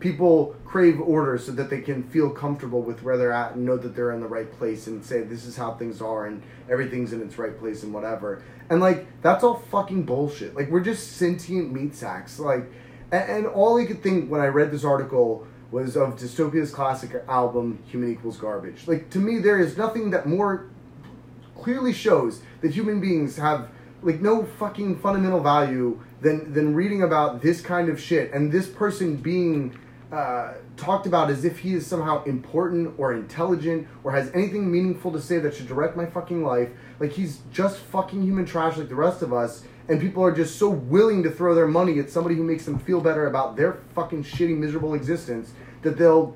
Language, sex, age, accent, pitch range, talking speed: English, male, 30-49, American, 125-175 Hz, 205 wpm